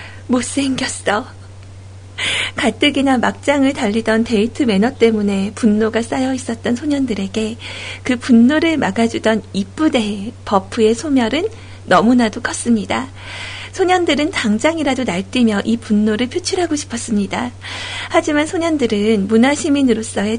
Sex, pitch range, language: female, 190-255 Hz, Korean